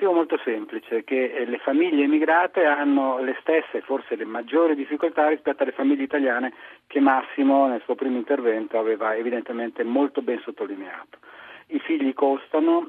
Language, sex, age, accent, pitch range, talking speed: Italian, male, 40-59, native, 120-190 Hz, 155 wpm